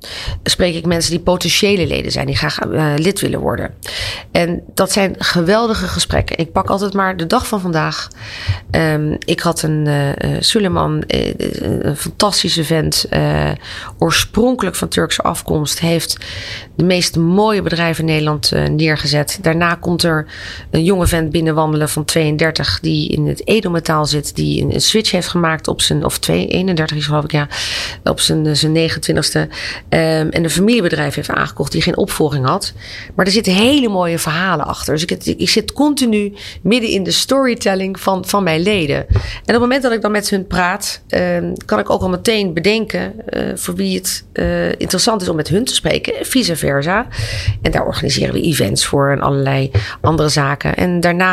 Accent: Dutch